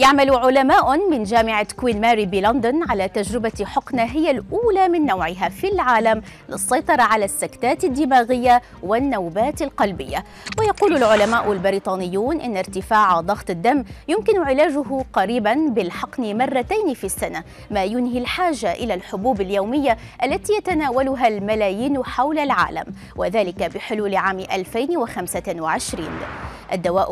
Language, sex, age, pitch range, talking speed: Arabic, female, 20-39, 200-285 Hz, 115 wpm